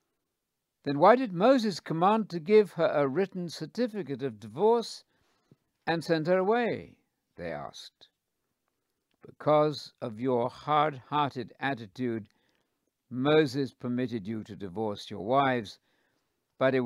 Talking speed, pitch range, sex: 120 wpm, 115-155 Hz, male